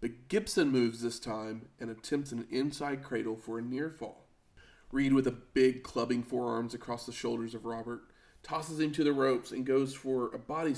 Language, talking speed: English, 195 wpm